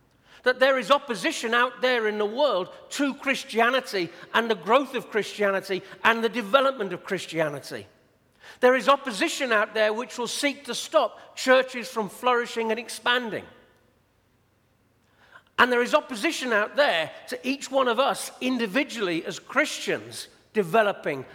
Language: English